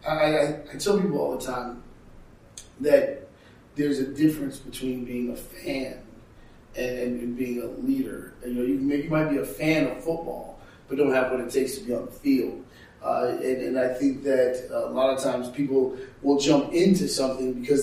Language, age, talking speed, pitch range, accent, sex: English, 30-49, 200 wpm, 130-155 Hz, American, male